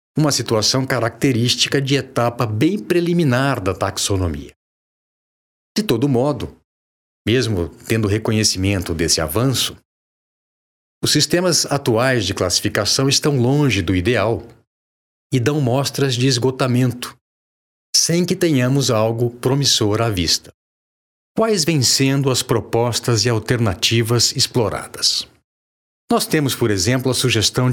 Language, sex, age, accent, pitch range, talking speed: Portuguese, male, 60-79, Brazilian, 100-135 Hz, 115 wpm